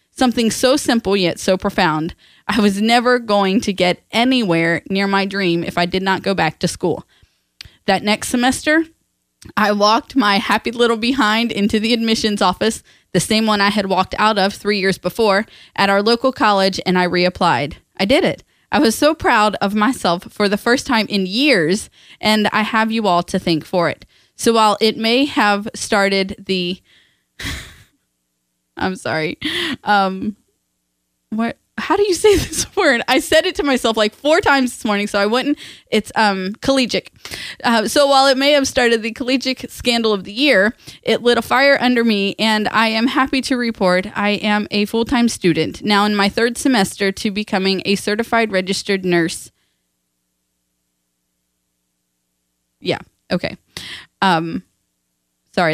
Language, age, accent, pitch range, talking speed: English, 20-39, American, 180-235 Hz, 170 wpm